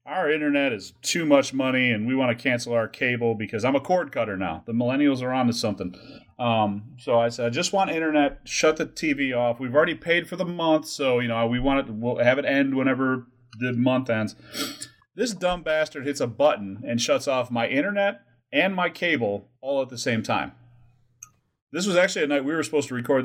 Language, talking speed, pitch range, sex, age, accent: English, 220 wpm, 120-155 Hz, male, 30-49, American